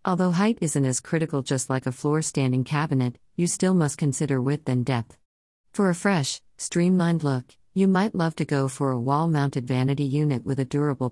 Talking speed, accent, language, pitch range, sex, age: 190 wpm, American, English, 130-160 Hz, female, 50-69